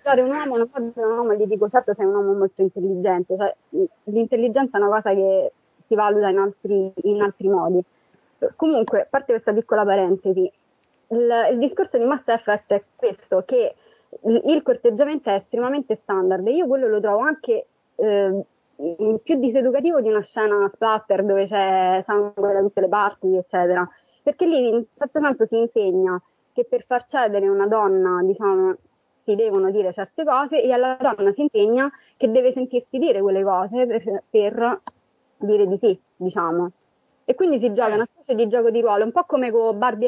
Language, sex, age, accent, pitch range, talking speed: Italian, female, 20-39, native, 195-265 Hz, 180 wpm